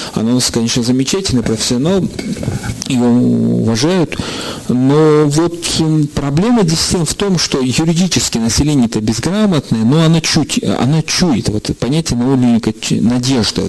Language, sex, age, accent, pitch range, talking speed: Russian, male, 40-59, native, 115-155 Hz, 125 wpm